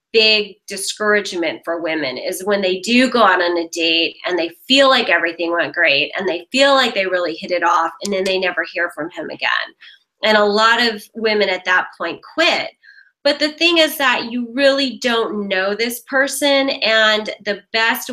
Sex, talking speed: female, 200 wpm